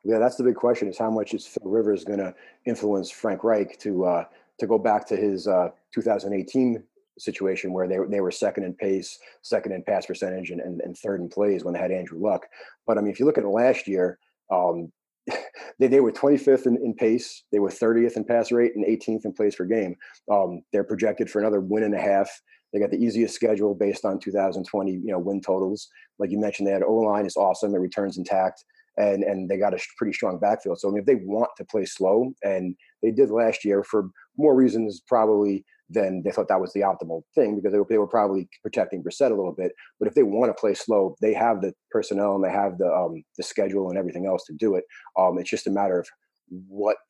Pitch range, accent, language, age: 95-115 Hz, American, English, 30-49